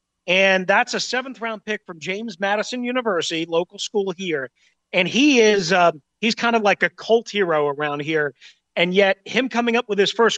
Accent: American